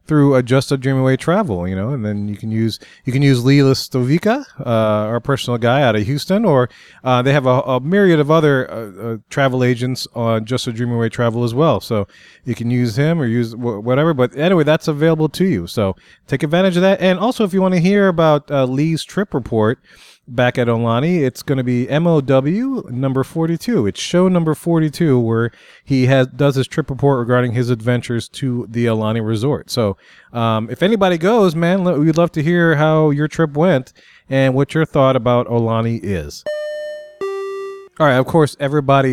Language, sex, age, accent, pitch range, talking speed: English, male, 30-49, American, 120-155 Hz, 200 wpm